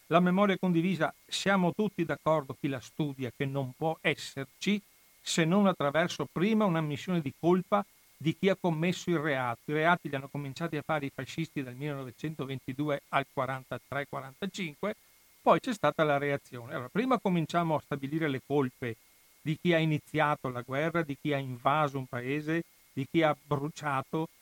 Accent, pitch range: native, 135-165 Hz